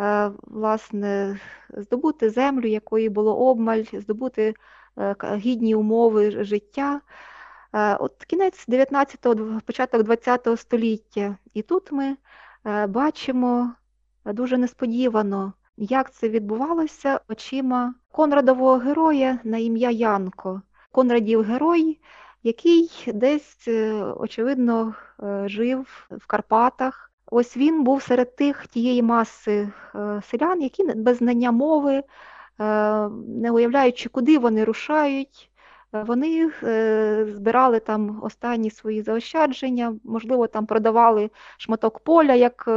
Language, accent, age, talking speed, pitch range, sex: Ukrainian, native, 20-39, 95 wpm, 220-265 Hz, female